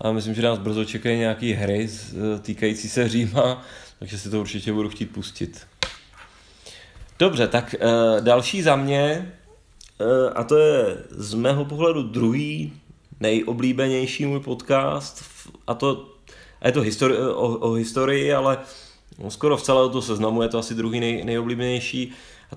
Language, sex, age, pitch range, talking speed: Czech, male, 30-49, 110-135 Hz, 155 wpm